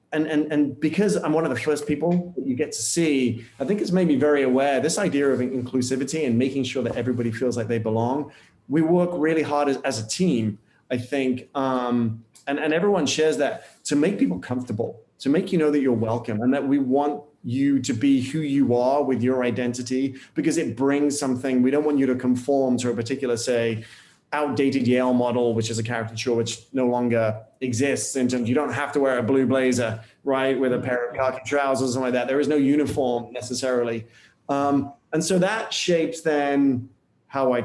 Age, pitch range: 30-49, 125-145 Hz